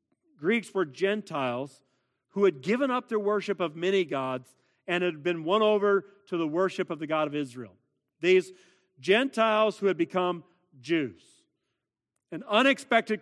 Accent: American